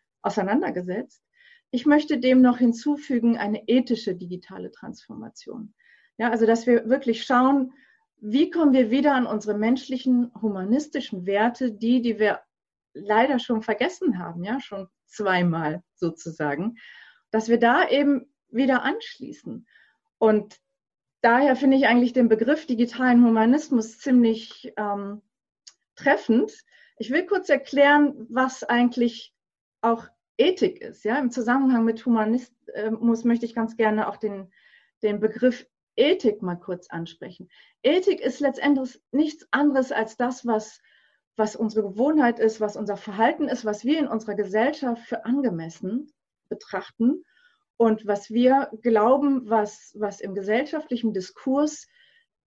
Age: 30-49